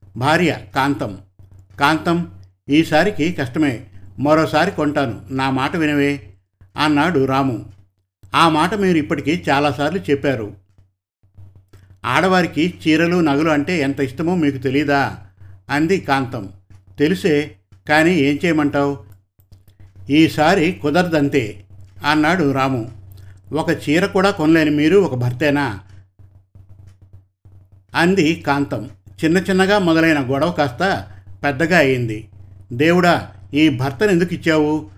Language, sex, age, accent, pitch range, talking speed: Telugu, male, 50-69, native, 100-160 Hz, 100 wpm